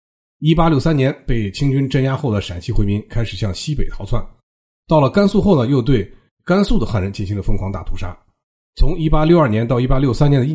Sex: male